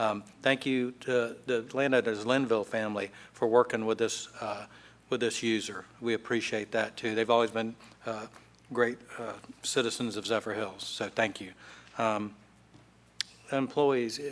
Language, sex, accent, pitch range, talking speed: English, male, American, 110-125 Hz, 140 wpm